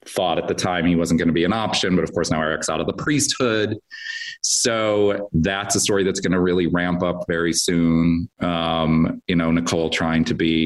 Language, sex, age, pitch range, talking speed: English, male, 40-59, 85-95 Hz, 220 wpm